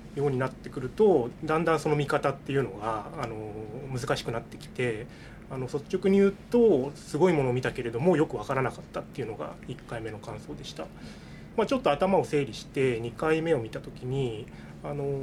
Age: 20-39